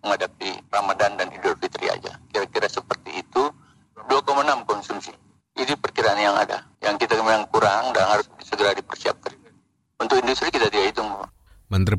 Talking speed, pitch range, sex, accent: 120 wpm, 85-110 Hz, male, native